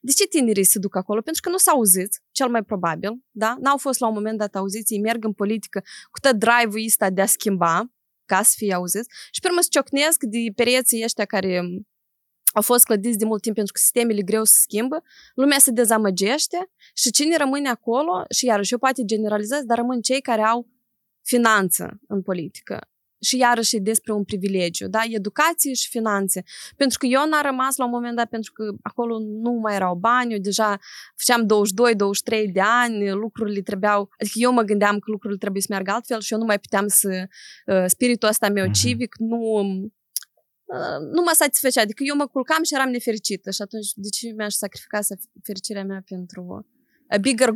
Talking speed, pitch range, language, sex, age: 195 wpm, 205-245 Hz, Romanian, female, 20-39